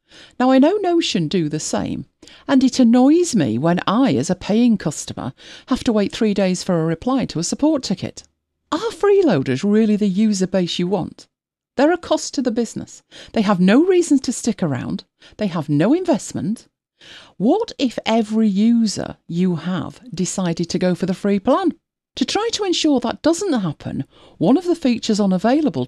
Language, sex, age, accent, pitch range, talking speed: English, female, 40-59, British, 180-275 Hz, 185 wpm